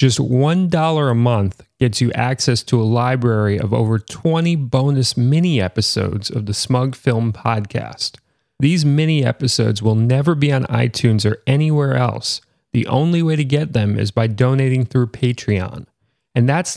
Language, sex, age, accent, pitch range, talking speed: English, male, 30-49, American, 115-150 Hz, 155 wpm